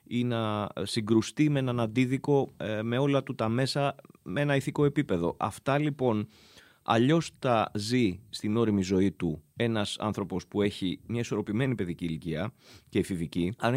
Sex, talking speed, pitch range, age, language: male, 155 wpm, 100-135 Hz, 30-49, Greek